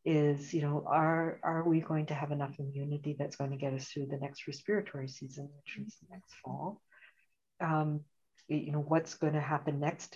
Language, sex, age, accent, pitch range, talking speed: English, female, 60-79, American, 150-190 Hz, 195 wpm